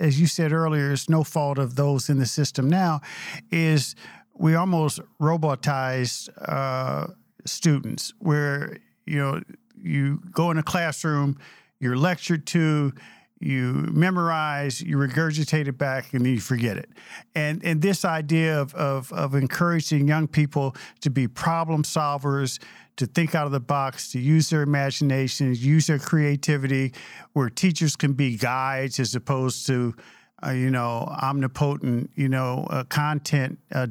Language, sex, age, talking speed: English, male, 50-69, 150 wpm